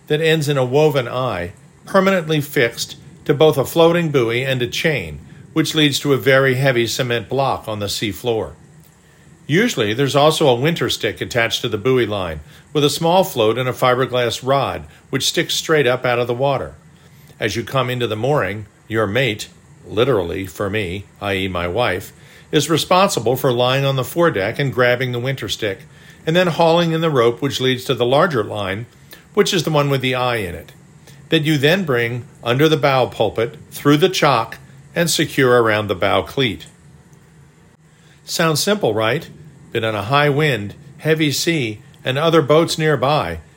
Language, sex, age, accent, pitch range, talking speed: English, male, 50-69, American, 120-155 Hz, 185 wpm